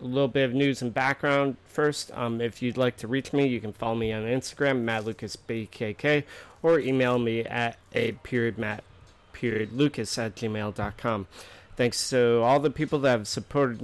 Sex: male